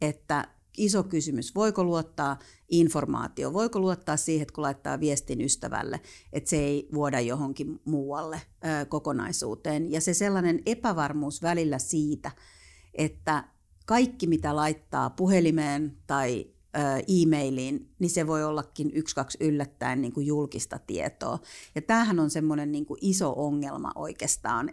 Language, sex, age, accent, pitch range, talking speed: Finnish, female, 50-69, native, 145-175 Hz, 125 wpm